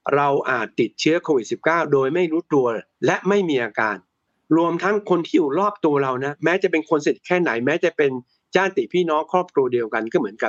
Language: Thai